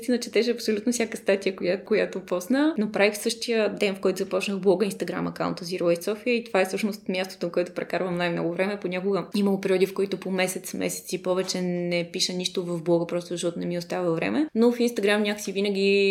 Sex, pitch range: female, 180-220 Hz